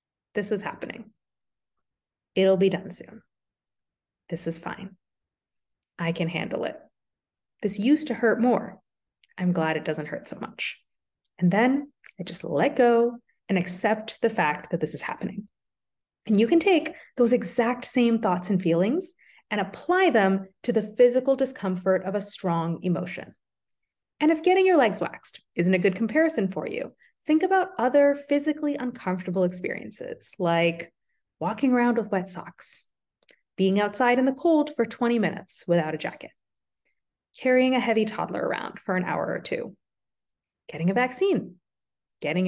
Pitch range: 180-250 Hz